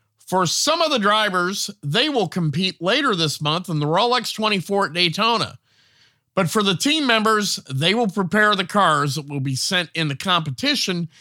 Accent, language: American, English